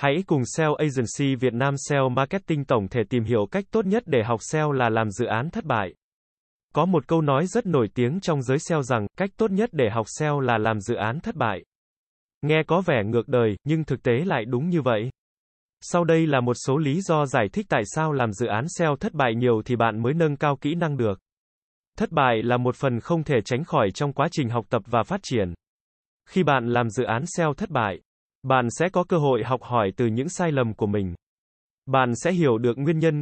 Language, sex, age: Vietnamese, male, 20-39